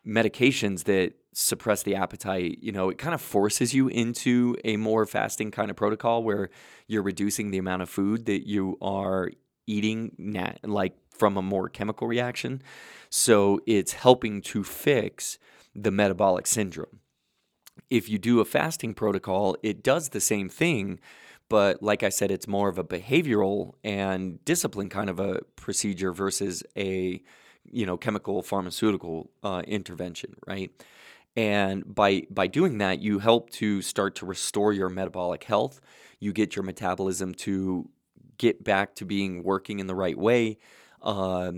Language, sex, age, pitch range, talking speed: English, male, 20-39, 95-105 Hz, 155 wpm